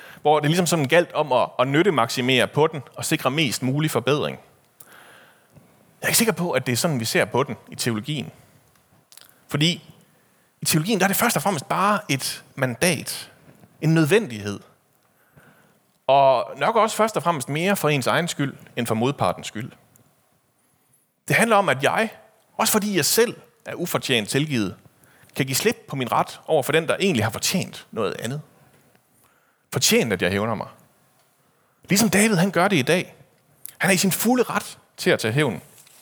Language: Danish